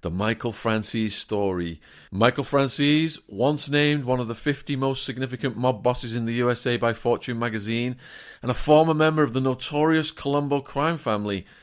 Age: 40-59